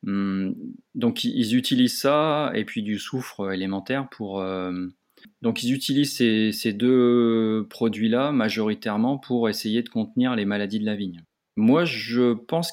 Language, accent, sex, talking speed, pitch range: French, French, male, 135 wpm, 100-130 Hz